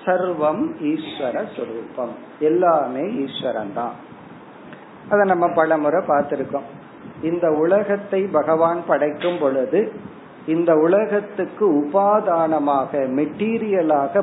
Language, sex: Tamil, male